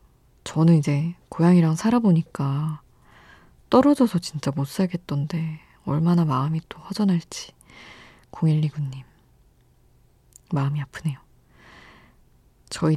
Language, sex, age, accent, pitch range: Korean, female, 20-39, native, 145-175 Hz